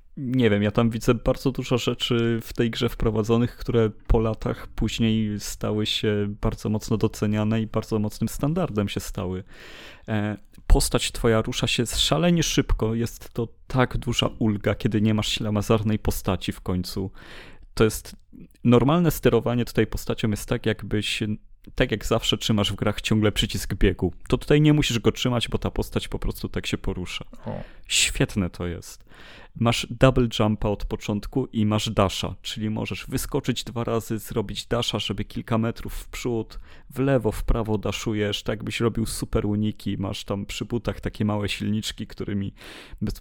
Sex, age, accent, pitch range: male, 30-49, native, 105-120 Hz